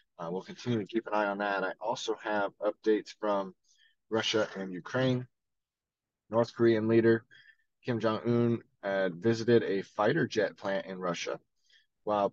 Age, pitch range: 20-39, 105-125 Hz